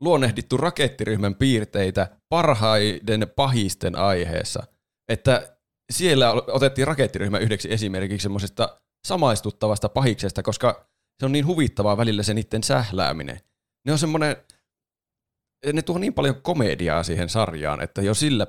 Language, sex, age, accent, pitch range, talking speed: Finnish, male, 30-49, native, 95-130 Hz, 115 wpm